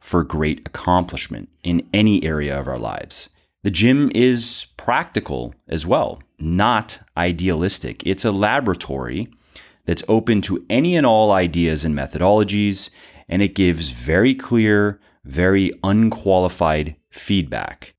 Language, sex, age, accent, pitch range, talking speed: English, male, 30-49, American, 80-105 Hz, 125 wpm